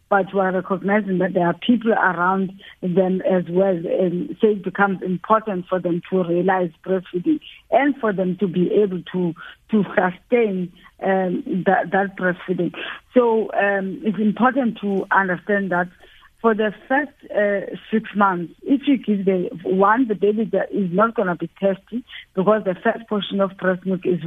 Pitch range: 185-220 Hz